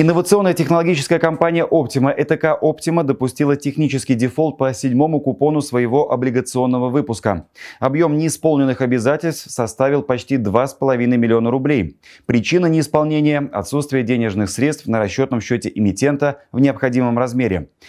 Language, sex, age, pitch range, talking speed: Russian, male, 30-49, 115-145 Hz, 120 wpm